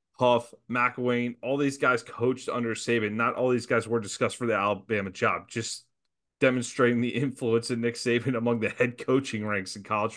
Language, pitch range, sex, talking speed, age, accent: English, 120-150 Hz, male, 190 wpm, 30-49, American